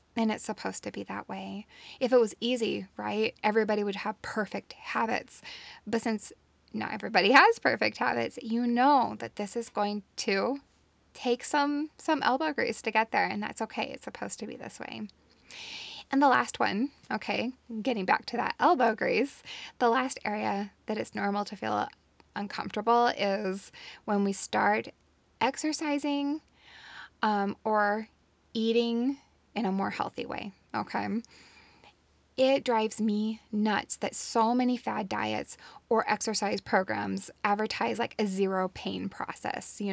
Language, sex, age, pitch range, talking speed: English, female, 10-29, 205-245 Hz, 150 wpm